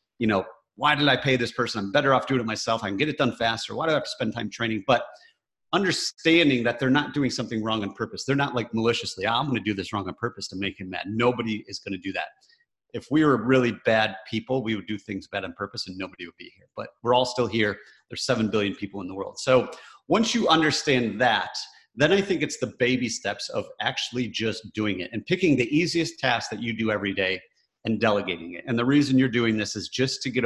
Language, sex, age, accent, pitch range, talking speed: English, male, 30-49, American, 105-130 Hz, 255 wpm